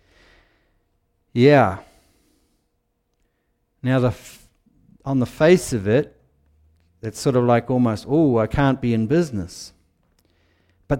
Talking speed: 105 wpm